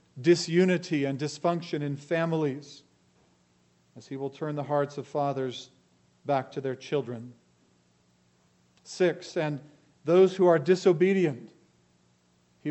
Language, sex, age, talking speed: English, male, 40-59, 115 wpm